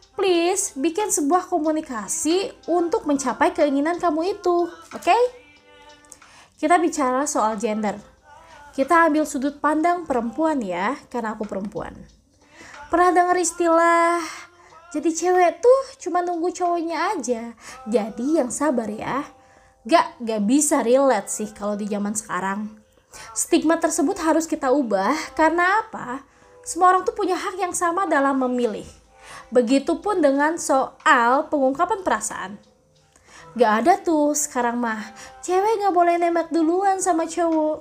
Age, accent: 20-39, native